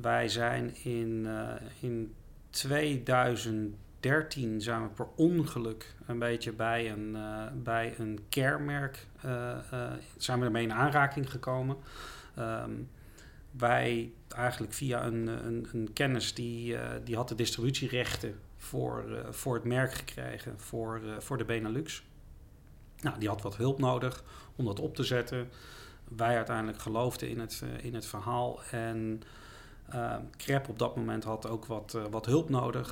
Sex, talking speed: male, 150 wpm